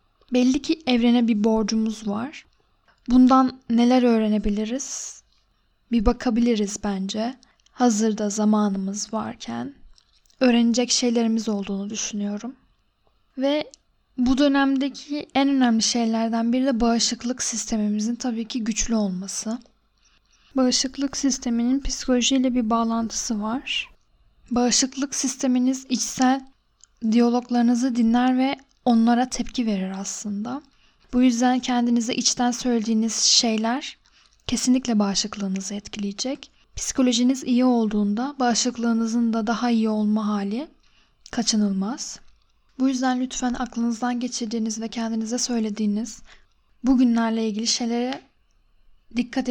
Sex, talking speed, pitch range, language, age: female, 100 wpm, 220-255 Hz, Turkish, 10-29